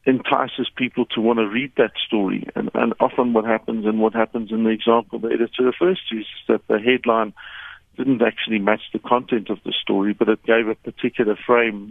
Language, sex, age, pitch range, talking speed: English, male, 50-69, 110-125 Hz, 205 wpm